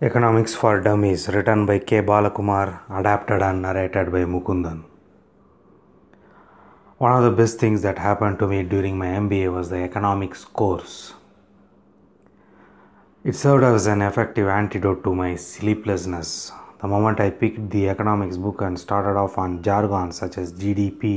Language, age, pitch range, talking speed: English, 30-49, 95-110 Hz, 145 wpm